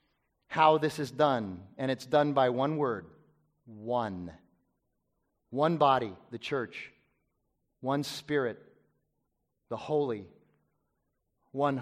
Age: 30-49